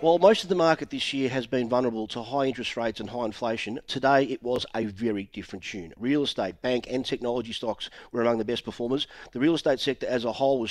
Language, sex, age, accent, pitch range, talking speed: English, male, 40-59, Australian, 115-140 Hz, 240 wpm